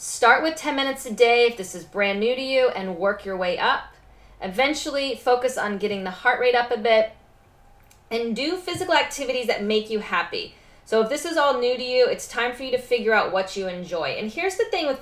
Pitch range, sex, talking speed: 205-265 Hz, female, 235 wpm